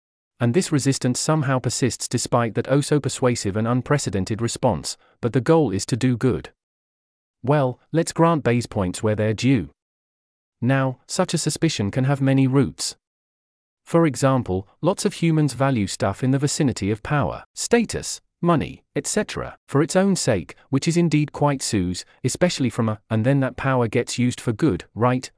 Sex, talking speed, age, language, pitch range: male, 165 wpm, 40-59, English, 115-145 Hz